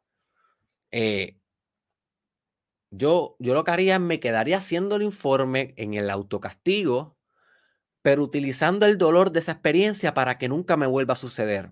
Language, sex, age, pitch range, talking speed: Spanish, male, 30-49, 110-165 Hz, 150 wpm